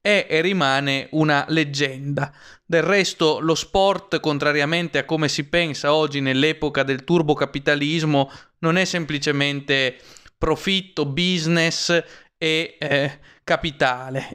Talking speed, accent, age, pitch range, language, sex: 110 wpm, native, 20-39, 135-165 Hz, Italian, male